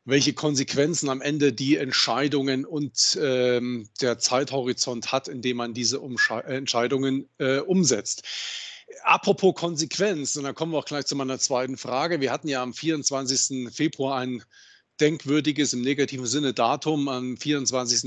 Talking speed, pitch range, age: 145 wpm, 130-155 Hz, 40-59